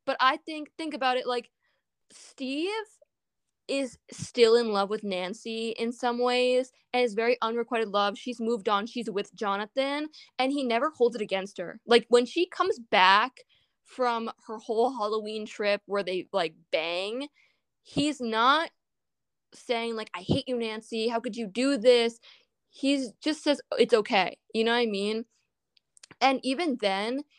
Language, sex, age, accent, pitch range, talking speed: English, female, 20-39, American, 210-260 Hz, 165 wpm